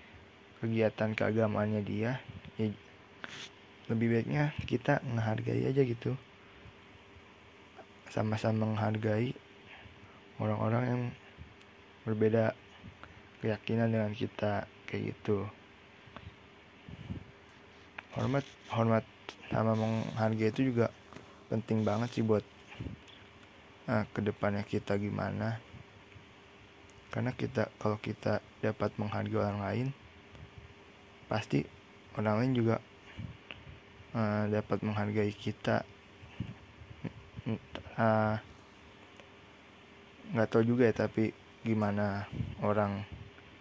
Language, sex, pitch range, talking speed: Indonesian, male, 100-115 Hz, 80 wpm